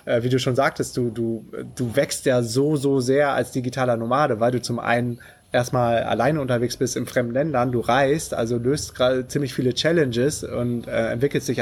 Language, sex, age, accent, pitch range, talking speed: German, male, 20-39, German, 120-135 Hz, 195 wpm